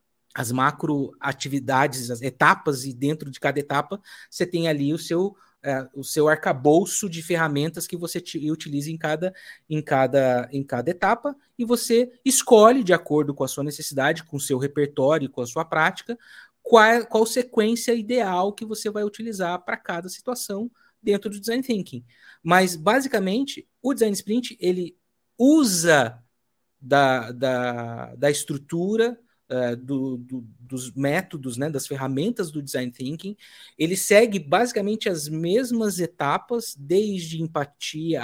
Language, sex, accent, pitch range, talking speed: Portuguese, male, Brazilian, 135-205 Hz, 145 wpm